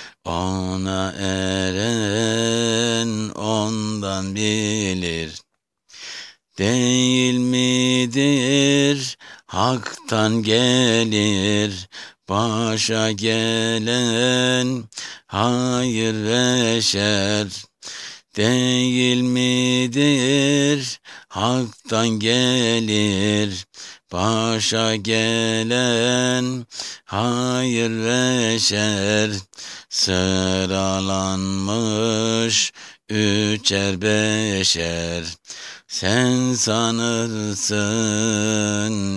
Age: 60-79